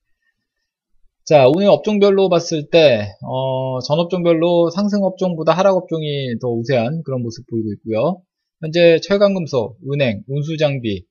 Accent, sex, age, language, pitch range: native, male, 20-39, Korean, 120-185 Hz